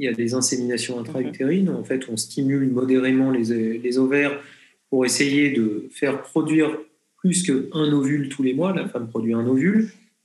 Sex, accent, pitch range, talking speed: male, French, 125-170 Hz, 175 wpm